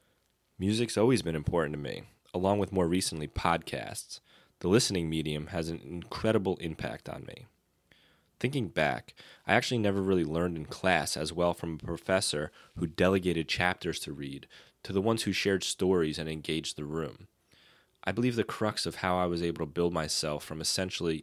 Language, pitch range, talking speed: English, 80-95 Hz, 180 wpm